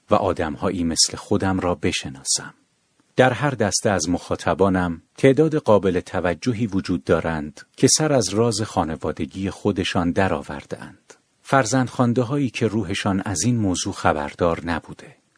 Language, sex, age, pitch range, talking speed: Persian, male, 50-69, 90-120 Hz, 135 wpm